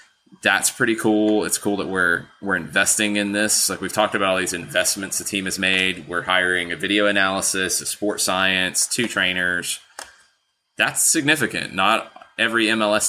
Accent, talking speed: American, 170 wpm